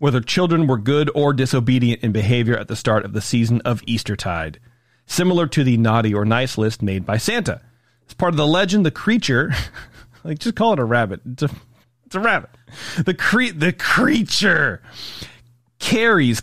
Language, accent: English, American